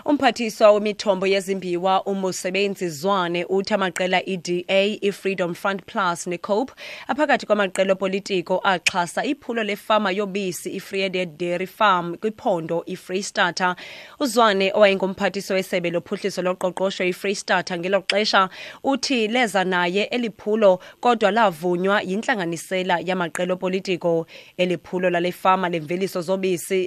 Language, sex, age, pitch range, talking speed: English, female, 20-39, 180-205 Hz, 125 wpm